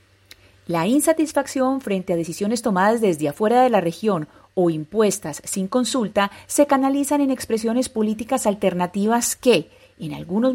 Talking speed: 135 wpm